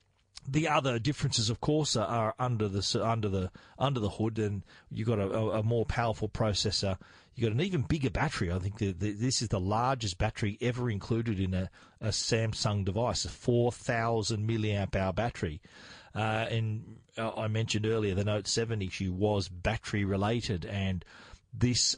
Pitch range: 105-120 Hz